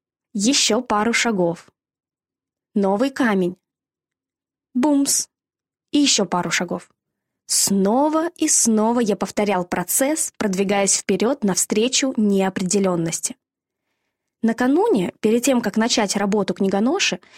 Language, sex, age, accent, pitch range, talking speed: Russian, female, 20-39, native, 195-255 Hz, 95 wpm